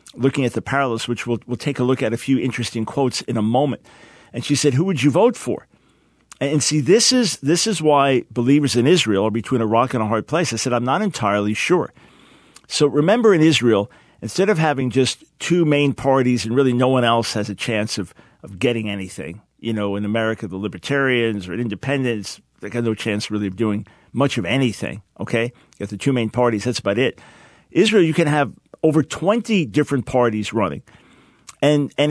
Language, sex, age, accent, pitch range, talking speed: English, male, 50-69, American, 115-145 Hz, 210 wpm